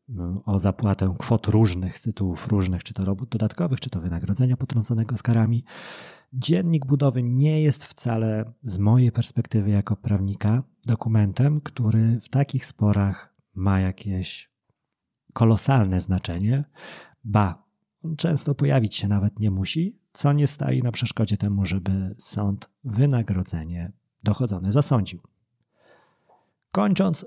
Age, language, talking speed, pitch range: 30-49, Polish, 120 wpm, 100-130 Hz